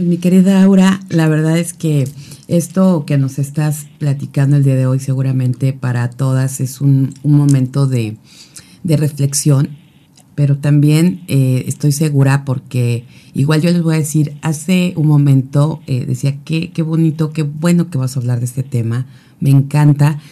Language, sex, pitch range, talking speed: Spanish, female, 135-160 Hz, 170 wpm